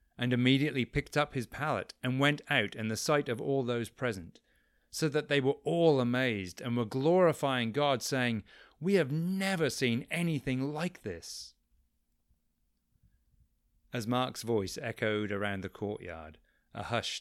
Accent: British